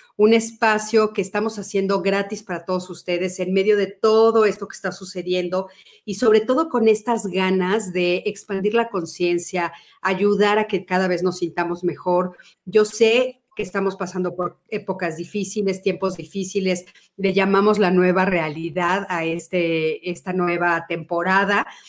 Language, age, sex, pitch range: Spanish, 40-59, female, 185-230 Hz